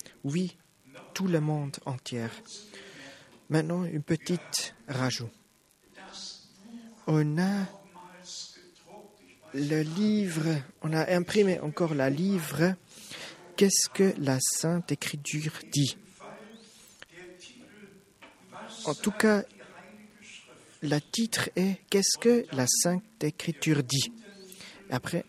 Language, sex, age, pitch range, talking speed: French, male, 40-59, 145-195 Hz, 100 wpm